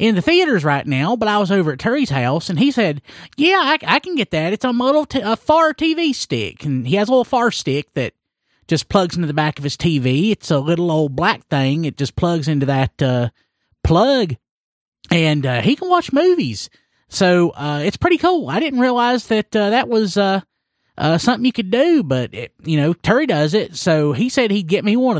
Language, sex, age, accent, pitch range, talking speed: English, male, 30-49, American, 140-225 Hz, 225 wpm